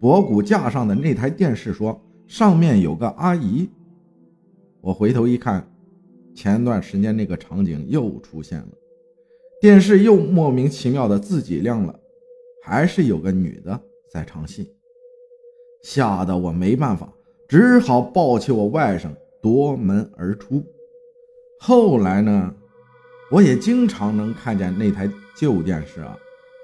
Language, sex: Chinese, male